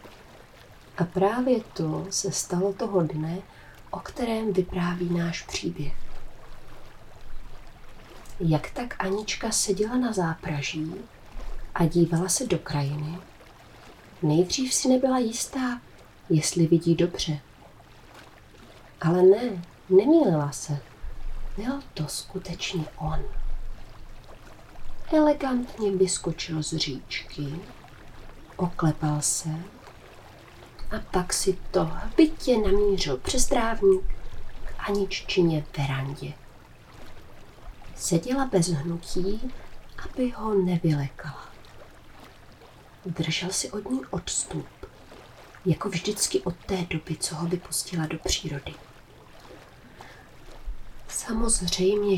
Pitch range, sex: 155-200 Hz, female